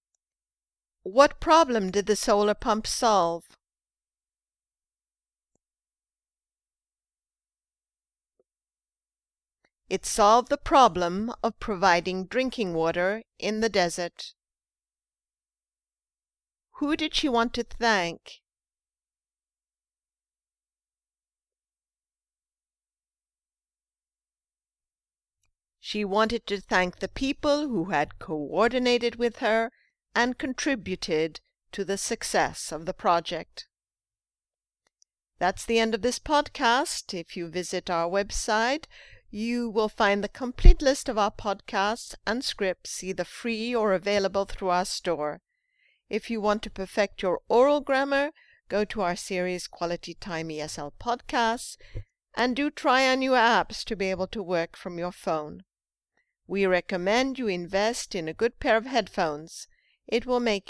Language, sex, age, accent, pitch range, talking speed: English, female, 50-69, American, 175-240 Hz, 115 wpm